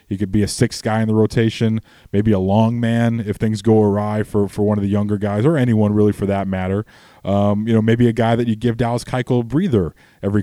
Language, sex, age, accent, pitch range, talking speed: English, male, 20-39, American, 95-115 Hz, 255 wpm